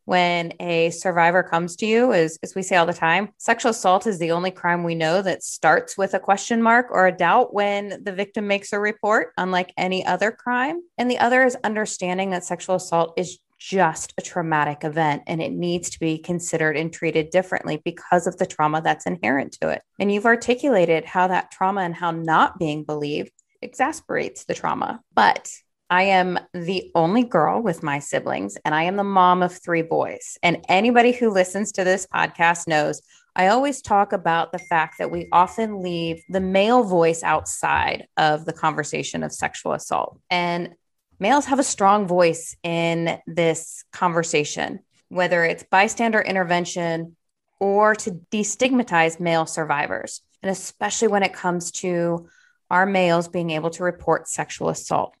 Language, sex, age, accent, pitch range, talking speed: English, female, 20-39, American, 170-205 Hz, 175 wpm